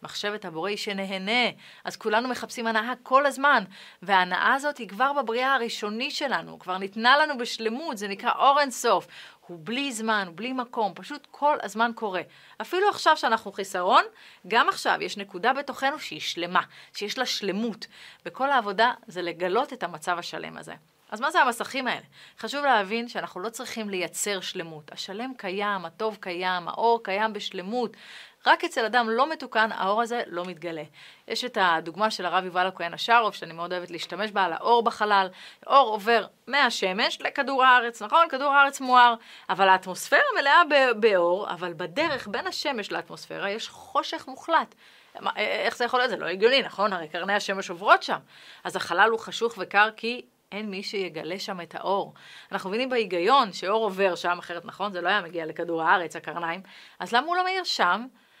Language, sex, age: Hebrew, female, 30-49